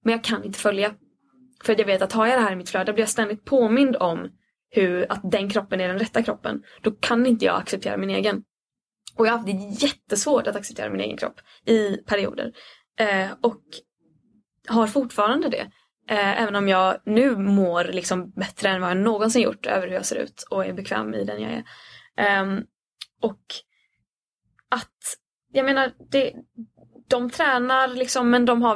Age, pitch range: 20-39, 200-255 Hz